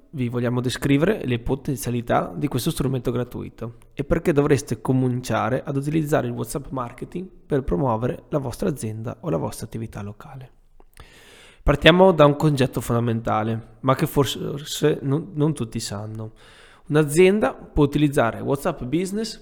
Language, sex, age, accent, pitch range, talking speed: Italian, male, 20-39, native, 115-155 Hz, 135 wpm